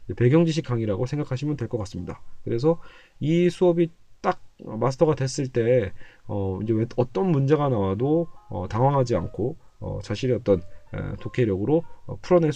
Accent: native